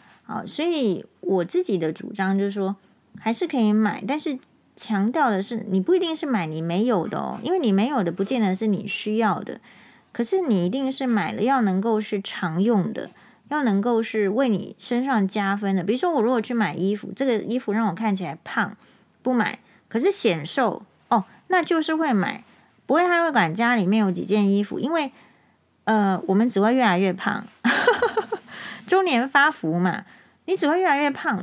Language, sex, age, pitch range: Chinese, female, 30-49, 195-250 Hz